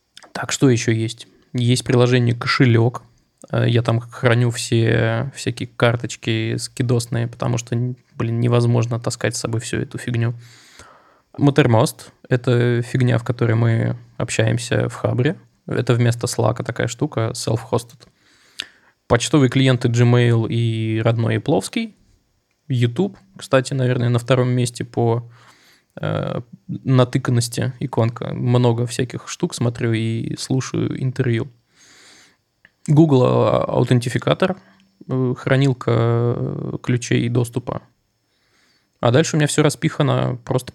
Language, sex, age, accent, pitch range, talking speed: Russian, male, 20-39, native, 115-135 Hz, 110 wpm